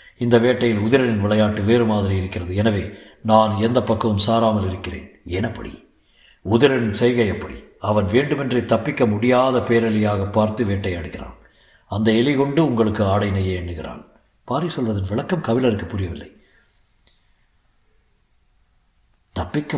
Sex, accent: male, native